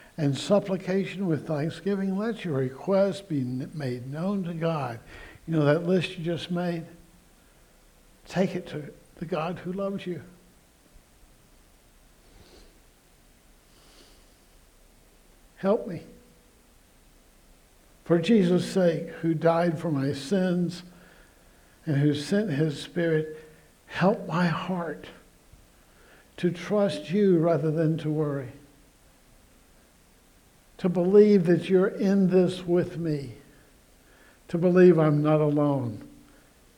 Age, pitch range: 60-79, 145-185 Hz